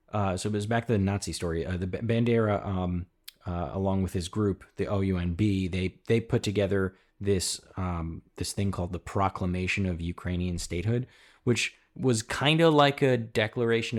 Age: 30-49